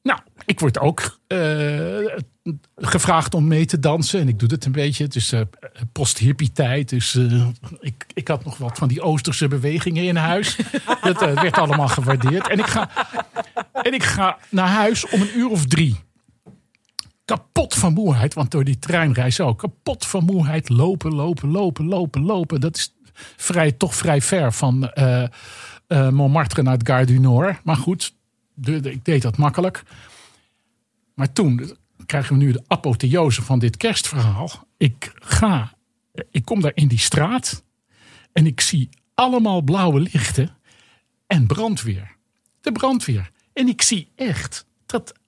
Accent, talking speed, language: Dutch, 160 wpm, Dutch